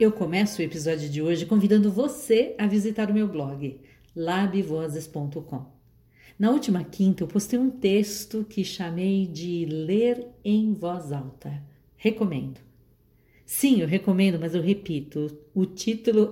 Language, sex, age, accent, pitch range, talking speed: Portuguese, female, 50-69, Brazilian, 155-215 Hz, 135 wpm